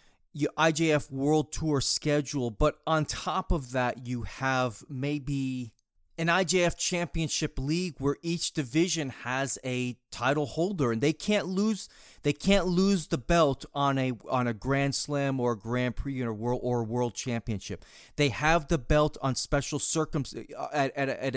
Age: 30-49